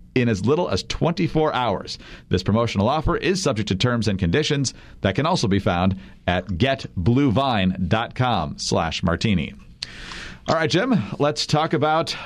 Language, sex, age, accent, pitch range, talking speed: English, male, 40-59, American, 105-140 Hz, 145 wpm